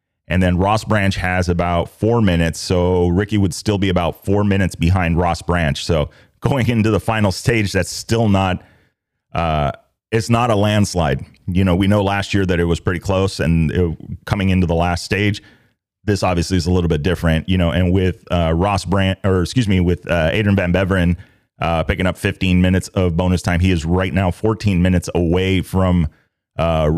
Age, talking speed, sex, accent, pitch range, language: 30-49, 200 wpm, male, American, 85-100 Hz, English